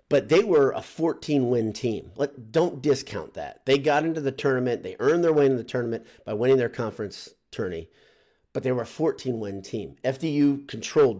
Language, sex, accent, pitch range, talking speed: English, male, American, 115-150 Hz, 190 wpm